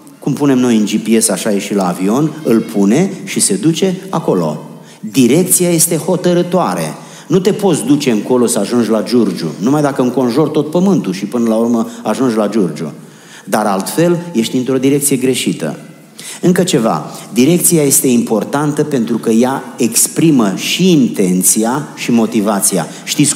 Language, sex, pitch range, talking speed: Romanian, male, 115-185 Hz, 155 wpm